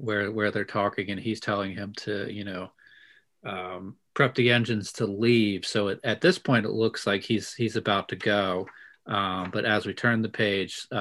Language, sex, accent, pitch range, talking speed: English, male, American, 100-115 Hz, 200 wpm